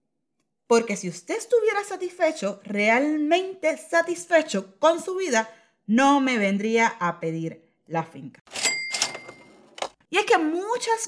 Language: Spanish